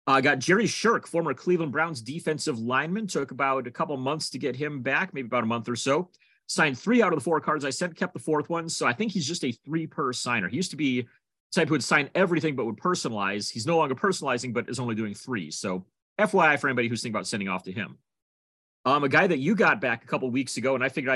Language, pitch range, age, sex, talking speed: English, 120-160 Hz, 30-49, male, 260 wpm